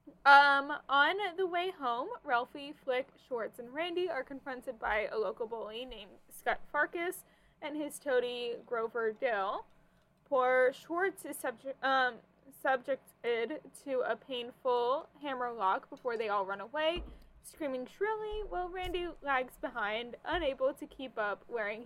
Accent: American